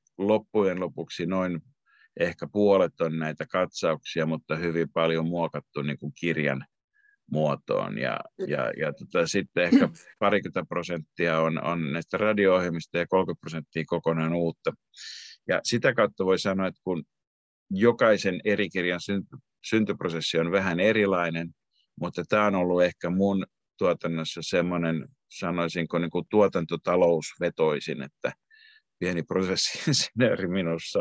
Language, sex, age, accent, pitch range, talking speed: Finnish, male, 50-69, native, 85-105 Hz, 120 wpm